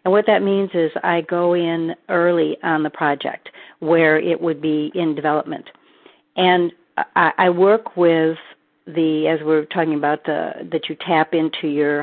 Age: 50-69